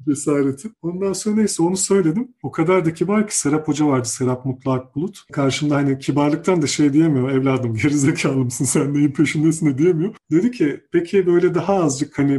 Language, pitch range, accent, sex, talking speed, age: Turkish, 130-165 Hz, native, male, 180 wpm, 40-59